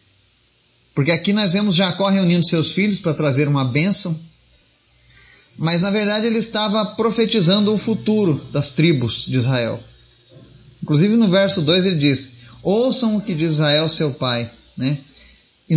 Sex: male